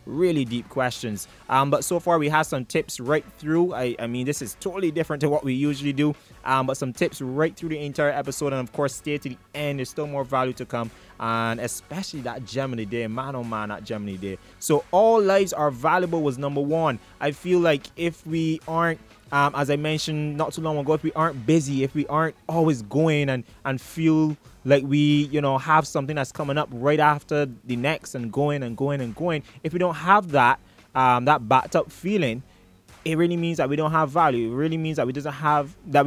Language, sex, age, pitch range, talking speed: English, male, 20-39, 130-160 Hz, 230 wpm